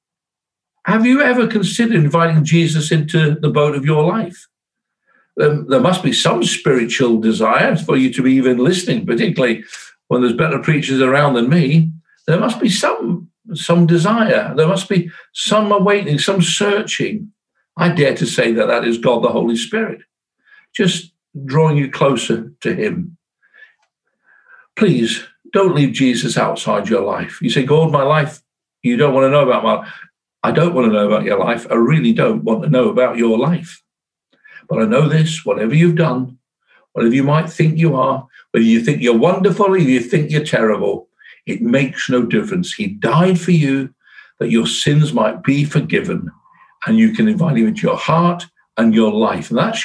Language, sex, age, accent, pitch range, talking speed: English, male, 60-79, British, 135-200 Hz, 180 wpm